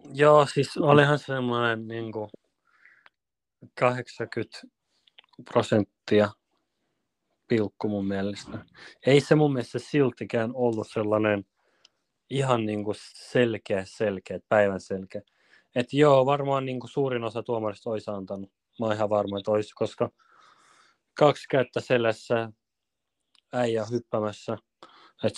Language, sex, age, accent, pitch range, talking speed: Finnish, male, 30-49, native, 105-125 Hz, 100 wpm